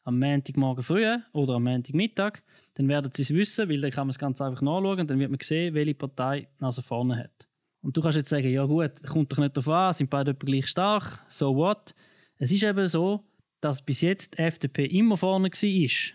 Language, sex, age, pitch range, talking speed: German, male, 20-39, 140-180 Hz, 225 wpm